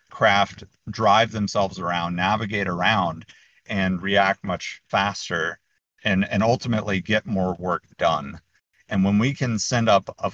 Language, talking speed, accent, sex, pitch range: English, 140 wpm, American, male, 95-115 Hz